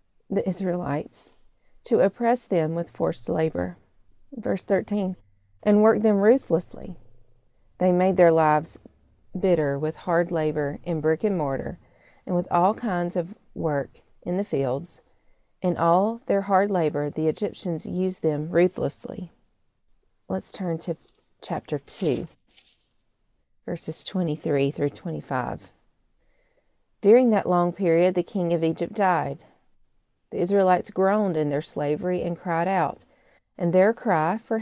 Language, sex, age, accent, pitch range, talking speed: English, female, 40-59, American, 160-195 Hz, 130 wpm